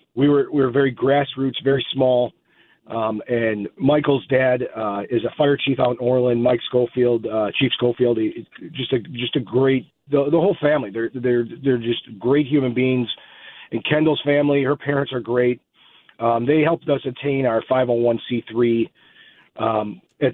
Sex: male